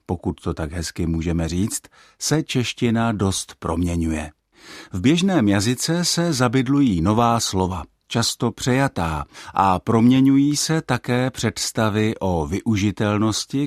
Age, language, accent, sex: 50-69, Czech, native, male